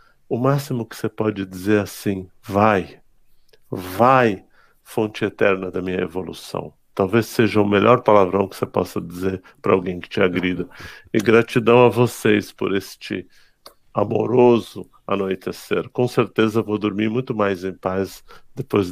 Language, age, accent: Portuguese, 50-69, Brazilian